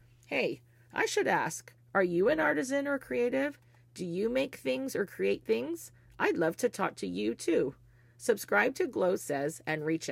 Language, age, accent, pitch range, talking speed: English, 40-59, American, 120-195 Hz, 180 wpm